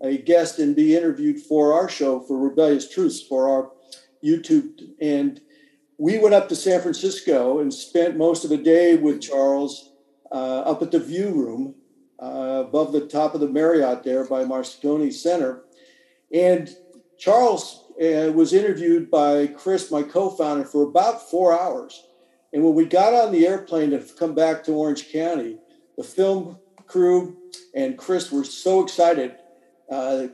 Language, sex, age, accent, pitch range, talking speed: English, male, 50-69, American, 150-200 Hz, 160 wpm